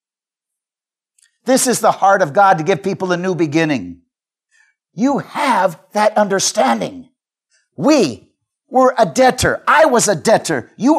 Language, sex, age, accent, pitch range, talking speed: English, male, 50-69, American, 145-210 Hz, 135 wpm